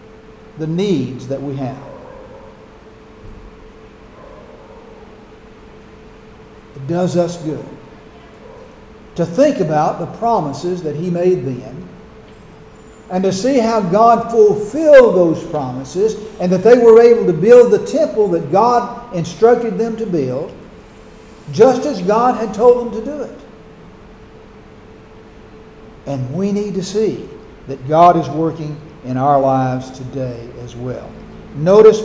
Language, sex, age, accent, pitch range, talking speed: English, male, 60-79, American, 145-230 Hz, 125 wpm